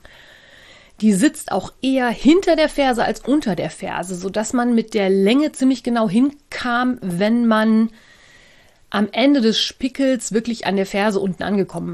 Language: German